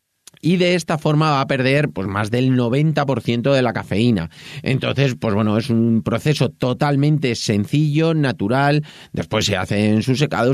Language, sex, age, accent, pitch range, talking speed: Spanish, male, 30-49, Spanish, 120-155 Hz, 165 wpm